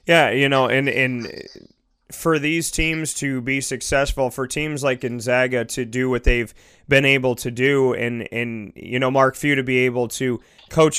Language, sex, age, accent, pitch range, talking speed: English, male, 30-49, American, 125-140 Hz, 185 wpm